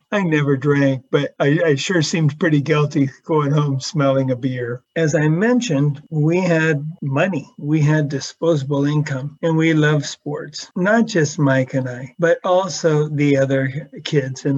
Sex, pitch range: male, 135-160 Hz